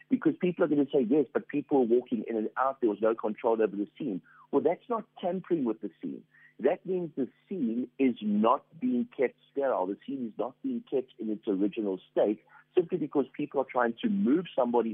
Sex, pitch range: male, 105-160 Hz